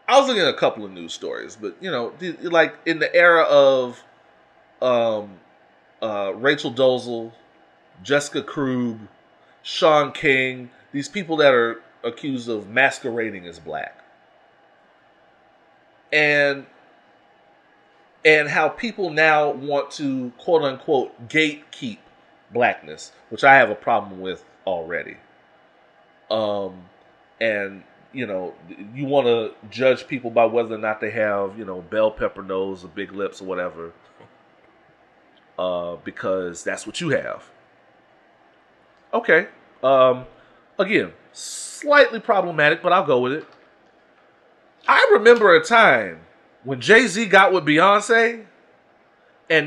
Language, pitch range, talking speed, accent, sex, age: English, 115-185 Hz, 125 wpm, American, male, 30-49